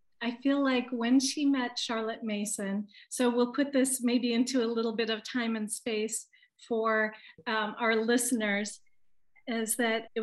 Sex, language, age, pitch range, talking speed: female, English, 40-59, 215-250 Hz, 165 wpm